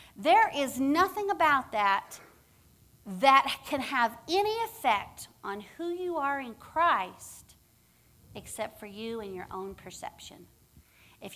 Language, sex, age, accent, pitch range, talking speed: English, female, 50-69, American, 200-300 Hz, 125 wpm